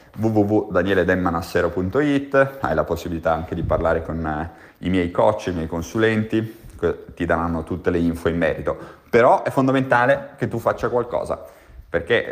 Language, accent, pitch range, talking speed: Italian, native, 85-115 Hz, 140 wpm